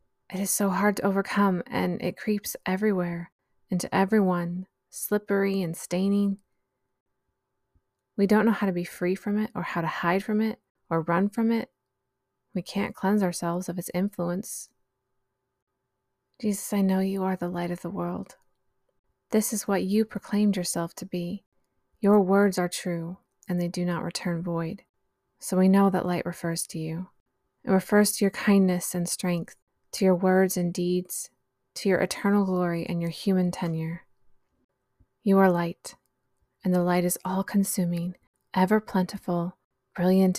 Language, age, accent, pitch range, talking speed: English, 20-39, American, 165-195 Hz, 160 wpm